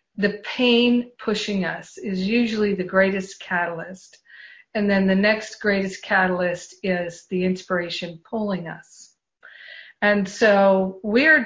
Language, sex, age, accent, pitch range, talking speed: English, female, 50-69, American, 190-230 Hz, 120 wpm